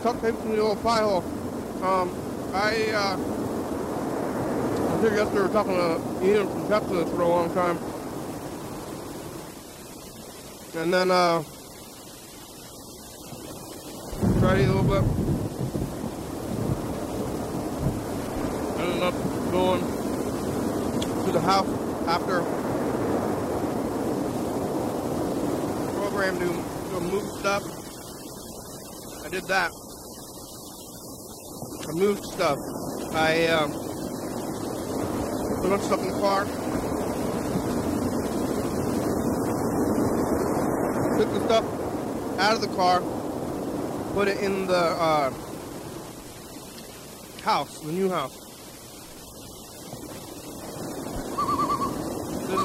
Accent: American